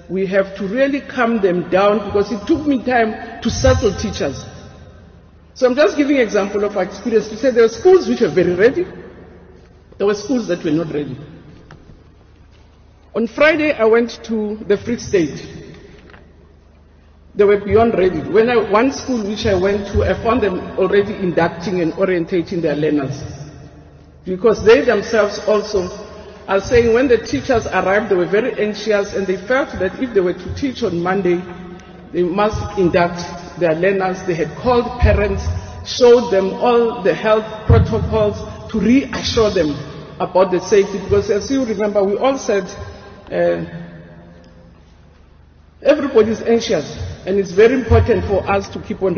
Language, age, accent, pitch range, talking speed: English, 50-69, South African, 170-225 Hz, 165 wpm